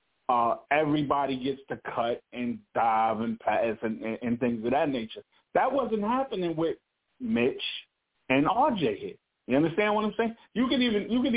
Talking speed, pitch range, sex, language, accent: 180 wpm, 140-220 Hz, male, English, American